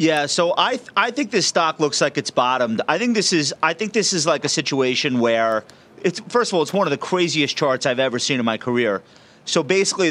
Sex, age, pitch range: male, 30-49, 145-195 Hz